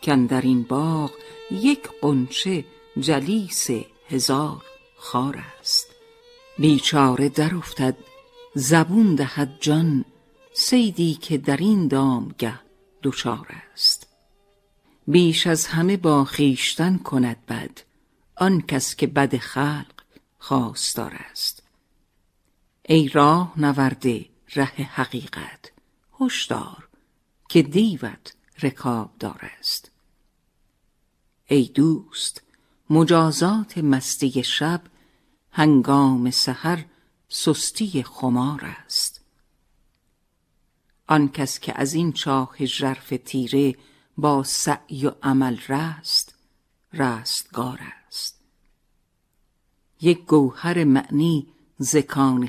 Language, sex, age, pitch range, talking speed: Persian, female, 50-69, 135-165 Hz, 85 wpm